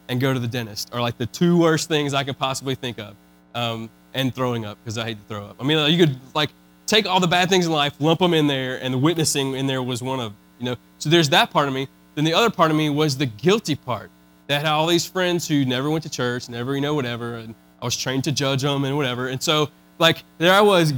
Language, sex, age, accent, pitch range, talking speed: English, male, 20-39, American, 120-160 Hz, 275 wpm